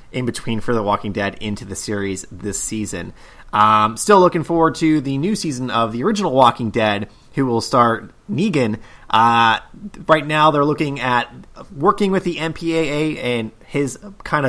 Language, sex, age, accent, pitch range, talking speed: English, male, 30-49, American, 110-155 Hz, 170 wpm